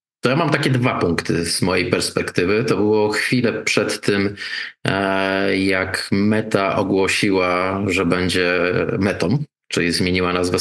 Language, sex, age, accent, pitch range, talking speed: Polish, male, 20-39, native, 95-115 Hz, 130 wpm